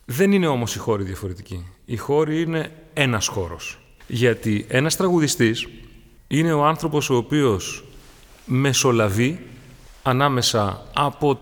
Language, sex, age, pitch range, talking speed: Greek, male, 30-49, 120-160 Hz, 115 wpm